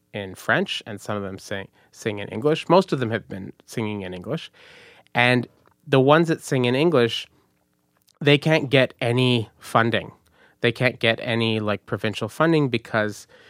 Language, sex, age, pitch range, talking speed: English, male, 30-49, 100-125 Hz, 170 wpm